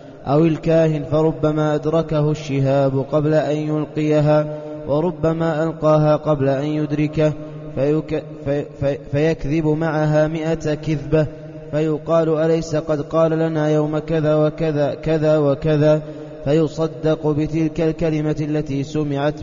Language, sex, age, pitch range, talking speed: Arabic, male, 20-39, 150-160 Hz, 100 wpm